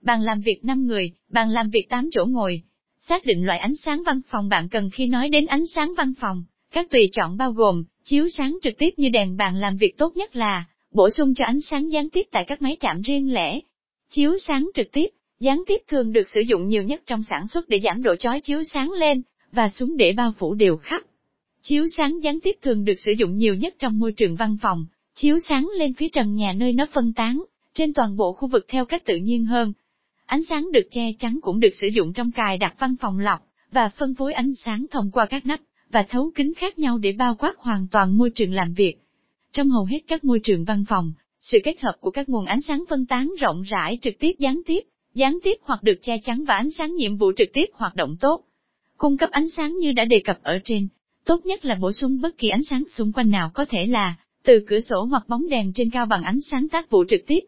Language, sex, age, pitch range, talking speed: Vietnamese, female, 20-39, 215-295 Hz, 250 wpm